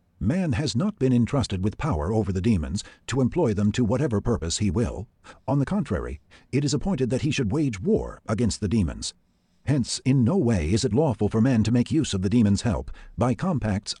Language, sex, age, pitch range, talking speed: English, male, 50-69, 100-125 Hz, 215 wpm